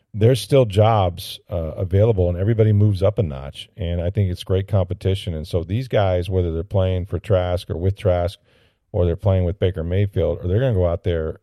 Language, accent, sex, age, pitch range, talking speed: English, American, male, 40-59, 85-105 Hz, 220 wpm